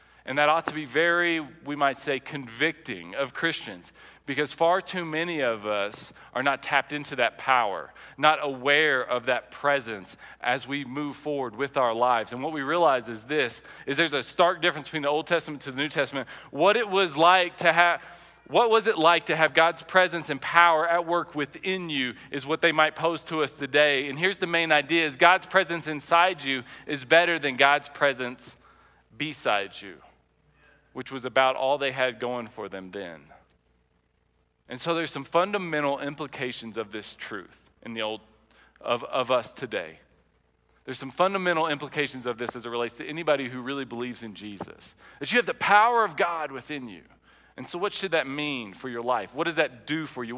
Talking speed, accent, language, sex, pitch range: 200 wpm, American, English, male, 125-165 Hz